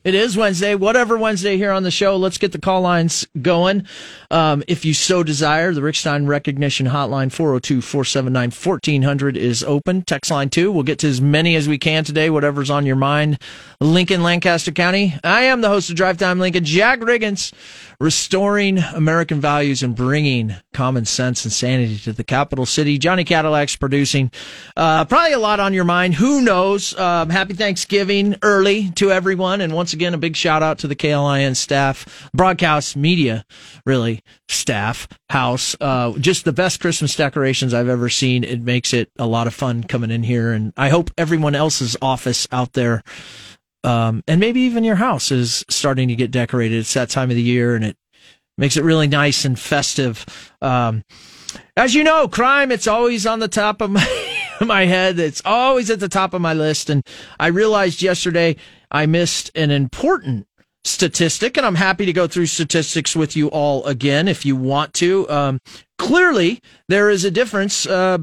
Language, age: English, 30-49